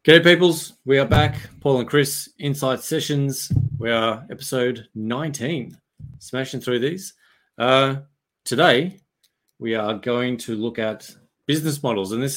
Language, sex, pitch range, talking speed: English, male, 100-130 Hz, 140 wpm